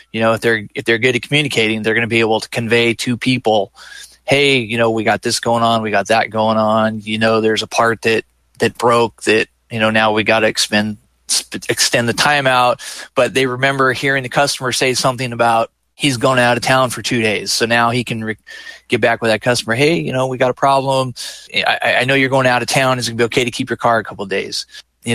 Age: 30-49